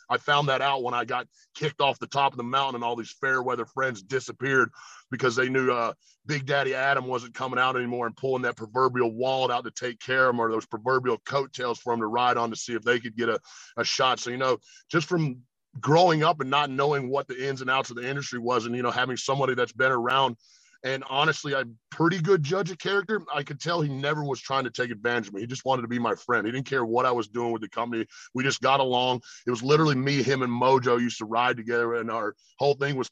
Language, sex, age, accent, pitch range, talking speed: English, male, 30-49, American, 120-135 Hz, 265 wpm